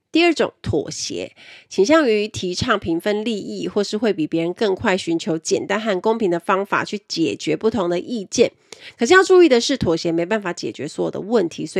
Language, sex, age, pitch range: Chinese, female, 30-49, 170-265 Hz